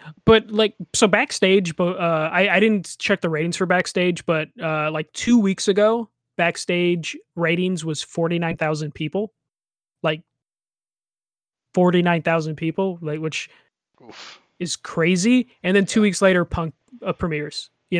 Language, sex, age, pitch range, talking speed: English, male, 20-39, 160-190 Hz, 135 wpm